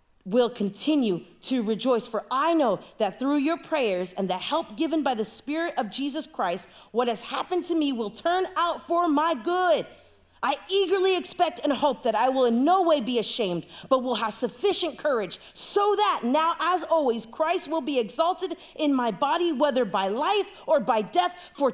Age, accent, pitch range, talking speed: 30-49, American, 210-325 Hz, 190 wpm